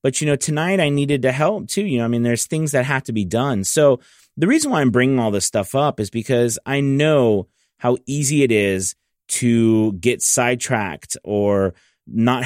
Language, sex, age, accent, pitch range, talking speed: English, male, 30-49, American, 100-125 Hz, 205 wpm